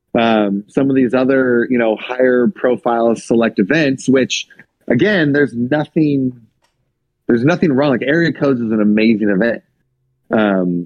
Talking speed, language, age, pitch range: 145 wpm, English, 30-49, 105-130 Hz